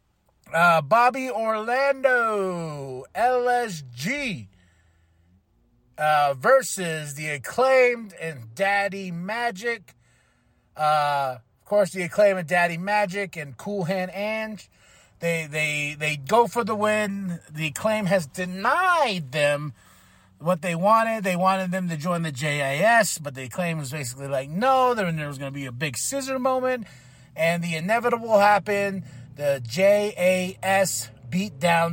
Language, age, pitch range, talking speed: English, 30-49, 140-200 Hz, 130 wpm